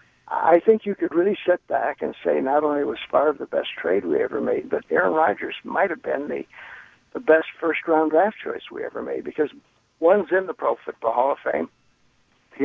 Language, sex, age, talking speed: English, male, 60-79, 210 wpm